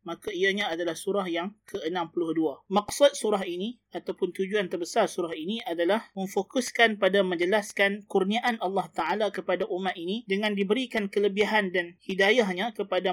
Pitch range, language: 175-200 Hz, Malay